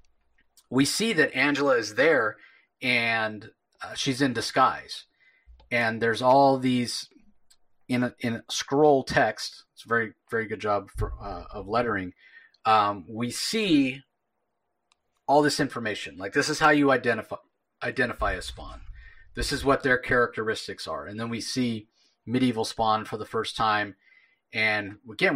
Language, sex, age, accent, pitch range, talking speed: English, male, 30-49, American, 110-135 Hz, 150 wpm